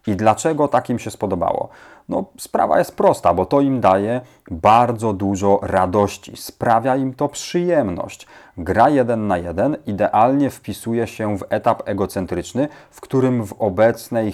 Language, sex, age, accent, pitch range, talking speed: Polish, male, 40-59, native, 95-115 Hz, 140 wpm